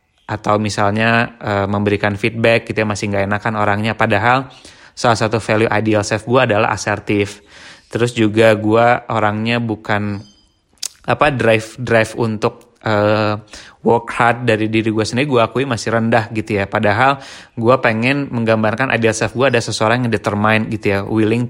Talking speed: 155 wpm